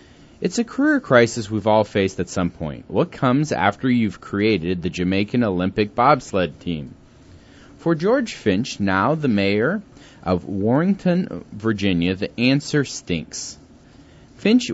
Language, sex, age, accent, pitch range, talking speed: English, male, 30-49, American, 95-140 Hz, 135 wpm